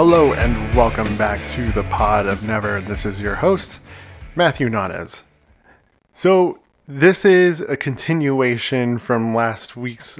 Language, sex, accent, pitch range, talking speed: English, male, American, 110-145 Hz, 135 wpm